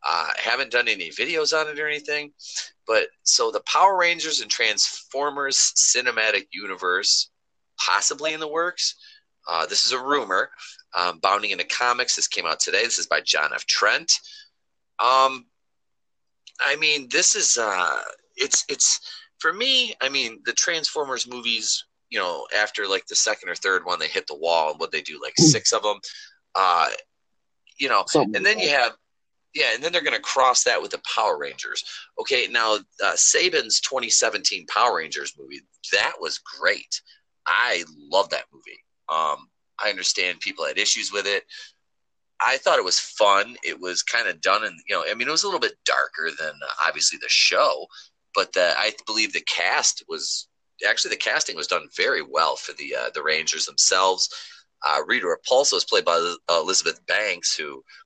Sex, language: male, English